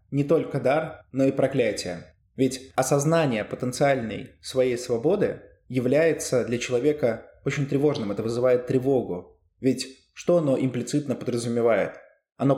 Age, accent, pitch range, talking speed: 20-39, native, 115-145 Hz, 120 wpm